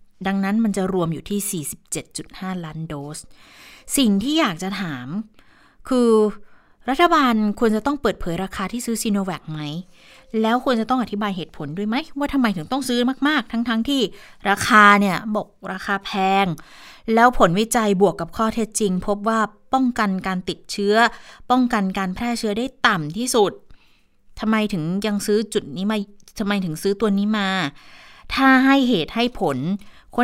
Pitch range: 195-240 Hz